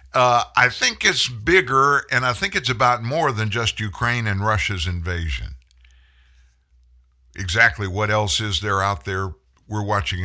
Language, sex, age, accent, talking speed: English, male, 50-69, American, 150 wpm